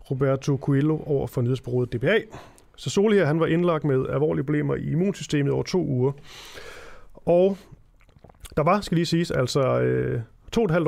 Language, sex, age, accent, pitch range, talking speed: Danish, male, 30-49, native, 125-165 Hz, 170 wpm